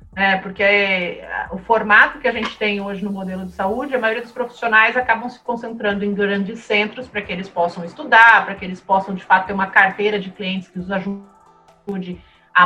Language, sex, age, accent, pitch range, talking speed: Portuguese, female, 30-49, Brazilian, 200-250 Hz, 200 wpm